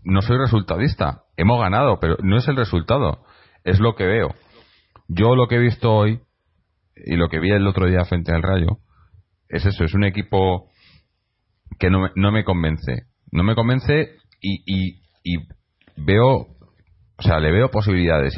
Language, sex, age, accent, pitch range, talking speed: Spanish, male, 30-49, Spanish, 85-100 Hz, 175 wpm